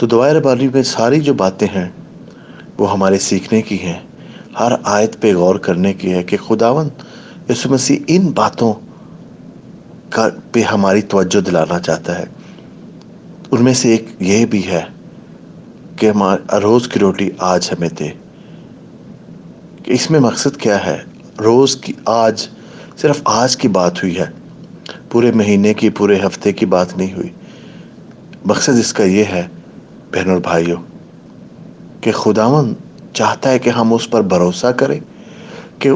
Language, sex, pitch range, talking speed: English, male, 100-130 Hz, 130 wpm